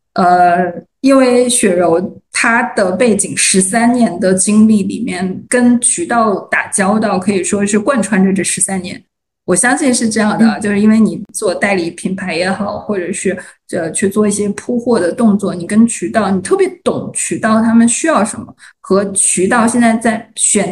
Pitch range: 195-240 Hz